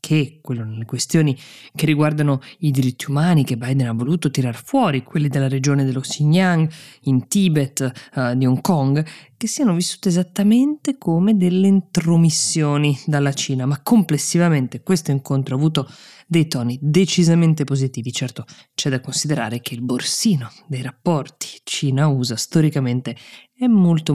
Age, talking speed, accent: 20-39, 145 wpm, native